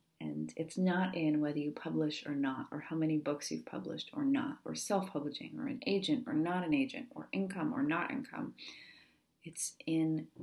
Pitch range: 150-180 Hz